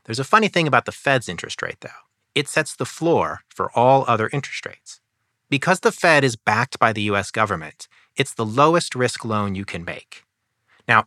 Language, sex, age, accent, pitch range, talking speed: English, male, 30-49, American, 110-145 Hz, 200 wpm